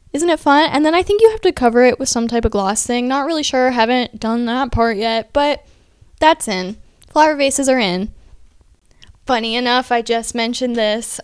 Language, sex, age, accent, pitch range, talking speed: English, female, 10-29, American, 210-275 Hz, 210 wpm